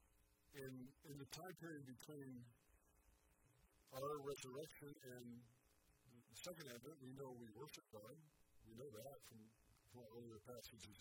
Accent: American